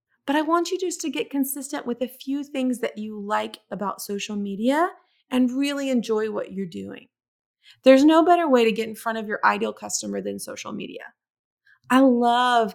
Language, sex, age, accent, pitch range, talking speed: English, female, 20-39, American, 200-245 Hz, 195 wpm